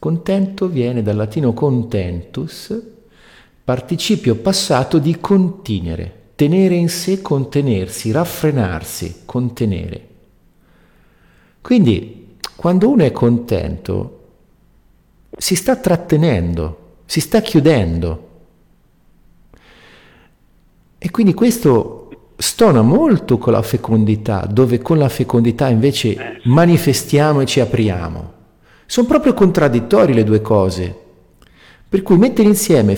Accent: native